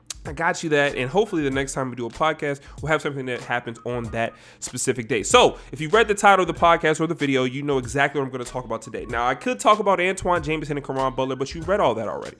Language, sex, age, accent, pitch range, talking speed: English, male, 20-39, American, 145-210 Hz, 290 wpm